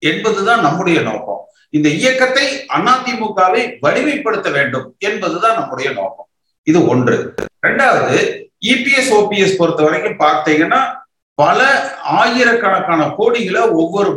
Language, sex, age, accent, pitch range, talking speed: Tamil, male, 50-69, native, 170-255 Hz, 90 wpm